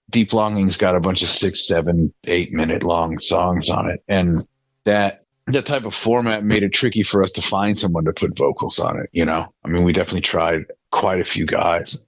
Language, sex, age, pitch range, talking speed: English, male, 40-59, 90-110 Hz, 220 wpm